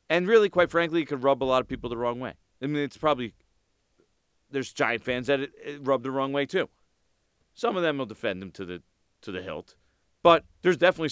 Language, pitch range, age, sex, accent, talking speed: English, 95-145 Hz, 40-59, male, American, 230 wpm